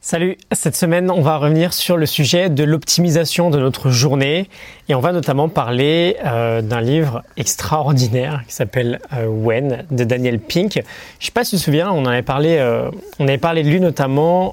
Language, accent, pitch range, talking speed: French, French, 130-170 Hz, 185 wpm